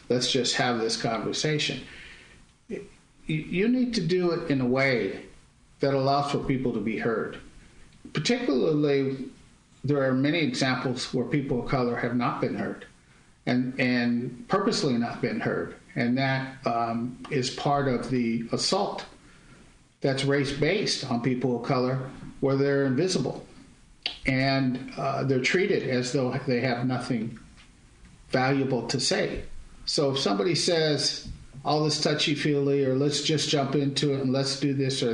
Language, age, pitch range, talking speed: English, 50-69, 125-155 Hz, 145 wpm